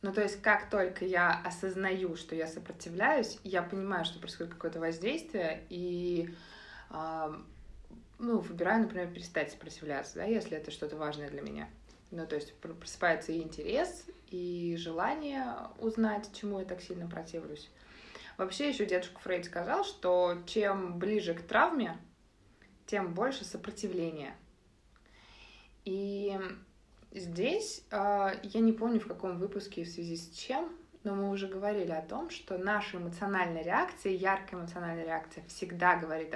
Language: Russian